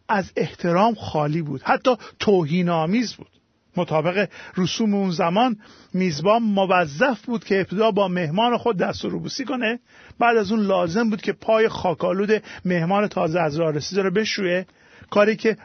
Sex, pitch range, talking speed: male, 175-220 Hz, 155 wpm